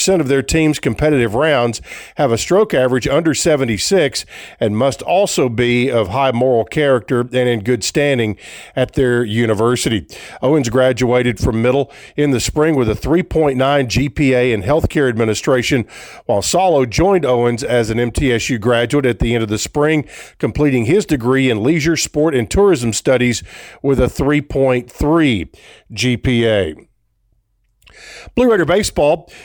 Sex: male